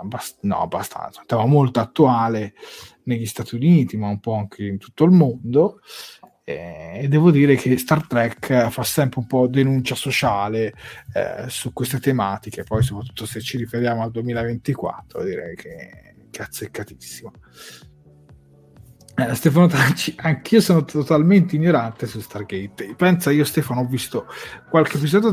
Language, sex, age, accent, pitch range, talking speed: Italian, male, 30-49, native, 115-155 Hz, 140 wpm